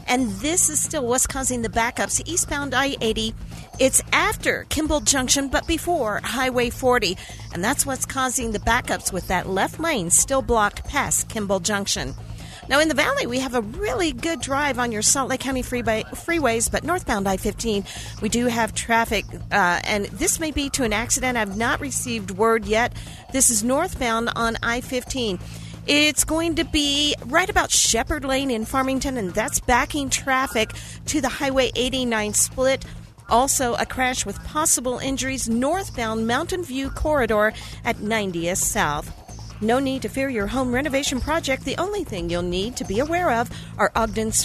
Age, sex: 40-59, female